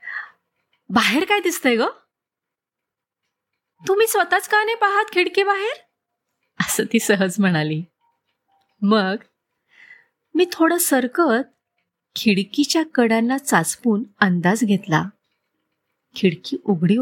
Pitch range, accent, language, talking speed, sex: 195-320 Hz, native, Marathi, 90 wpm, female